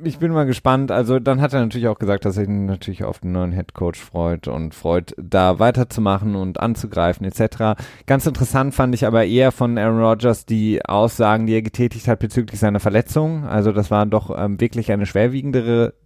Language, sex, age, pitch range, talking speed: German, male, 30-49, 110-130 Hz, 200 wpm